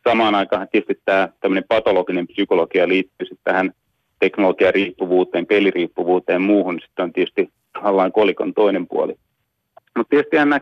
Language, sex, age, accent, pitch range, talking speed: Finnish, male, 30-49, native, 95-120 Hz, 130 wpm